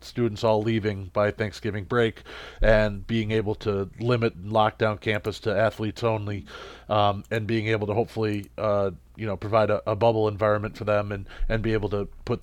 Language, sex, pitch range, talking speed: English, male, 105-120 Hz, 185 wpm